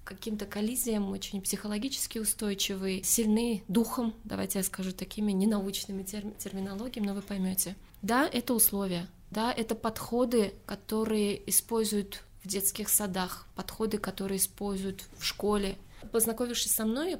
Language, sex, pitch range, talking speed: Russian, female, 195-230 Hz, 120 wpm